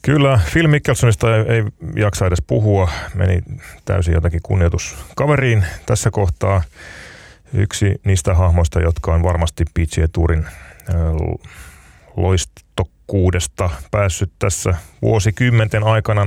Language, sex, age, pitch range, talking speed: Finnish, male, 30-49, 85-105 Hz, 90 wpm